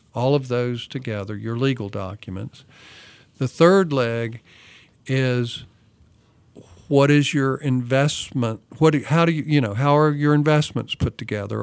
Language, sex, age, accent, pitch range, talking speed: English, male, 50-69, American, 115-140 Hz, 145 wpm